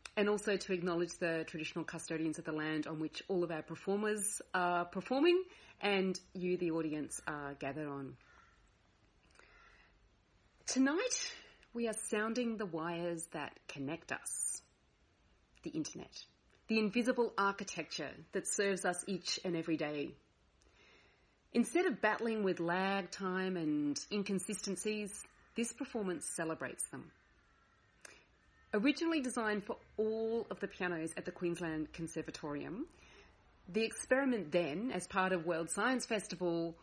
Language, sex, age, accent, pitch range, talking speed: English, female, 30-49, Australian, 165-215 Hz, 125 wpm